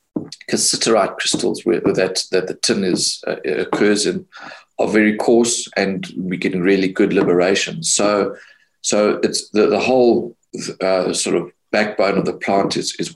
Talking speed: 165 wpm